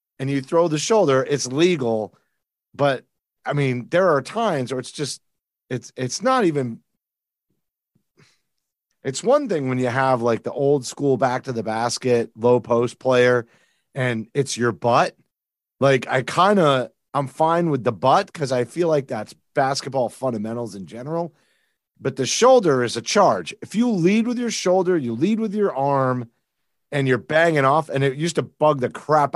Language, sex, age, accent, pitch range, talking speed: English, male, 30-49, American, 120-155 Hz, 165 wpm